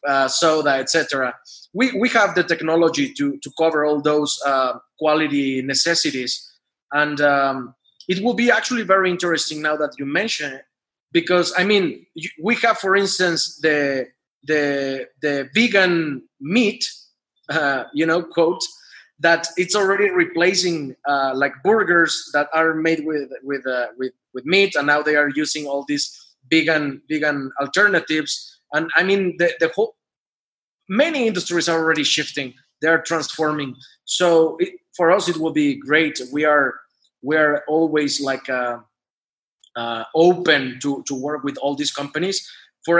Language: German